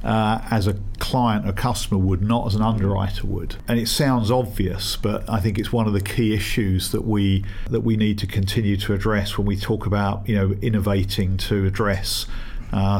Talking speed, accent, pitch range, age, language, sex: 205 wpm, British, 100-115 Hz, 50-69, English, male